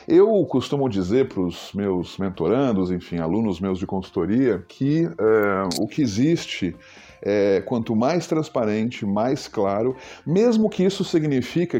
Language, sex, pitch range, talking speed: Portuguese, male, 100-145 Hz, 125 wpm